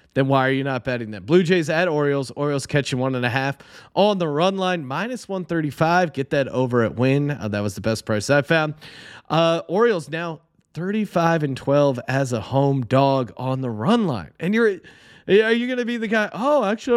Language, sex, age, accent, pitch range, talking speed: English, male, 30-49, American, 135-180 Hz, 215 wpm